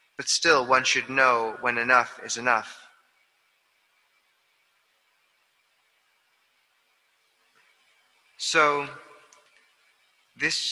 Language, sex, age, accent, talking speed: English, male, 30-49, American, 60 wpm